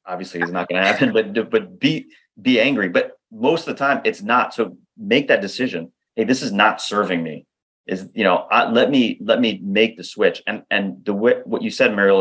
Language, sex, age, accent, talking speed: English, male, 30-49, American, 230 wpm